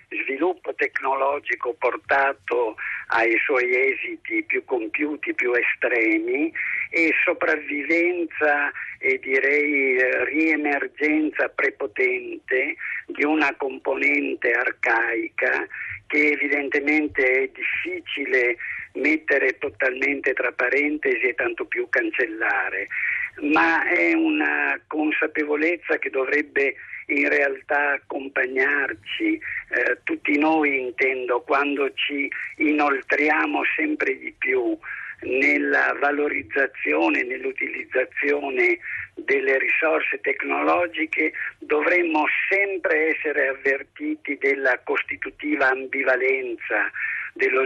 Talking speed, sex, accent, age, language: 80 wpm, male, native, 50-69, Italian